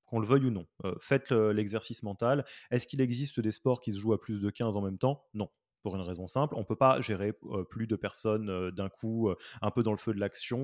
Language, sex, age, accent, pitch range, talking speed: French, male, 30-49, French, 105-135 Hz, 280 wpm